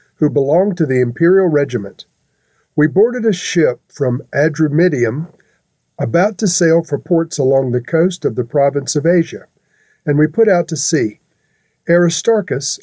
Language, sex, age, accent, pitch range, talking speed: English, male, 50-69, American, 140-175 Hz, 150 wpm